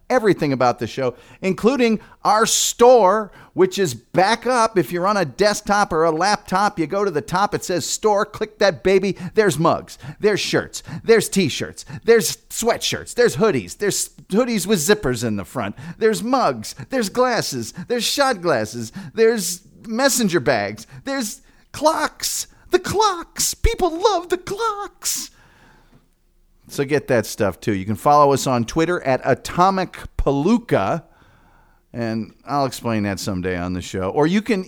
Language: English